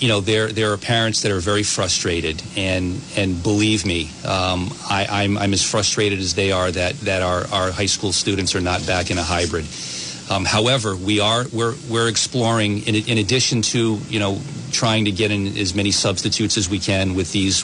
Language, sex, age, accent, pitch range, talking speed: English, male, 40-59, American, 95-110 Hz, 210 wpm